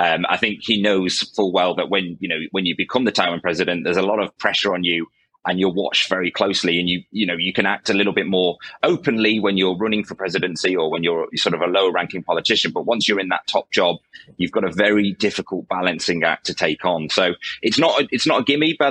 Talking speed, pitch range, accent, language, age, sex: 255 wpm, 90-105 Hz, British, English, 30-49, male